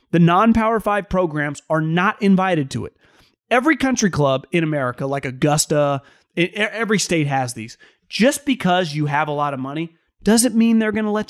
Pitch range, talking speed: 165-215 Hz, 180 wpm